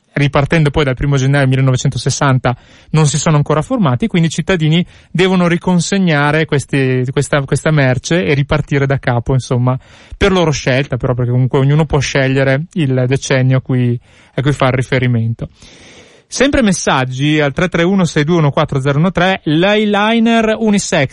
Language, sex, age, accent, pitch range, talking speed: Italian, male, 30-49, native, 135-175 Hz, 135 wpm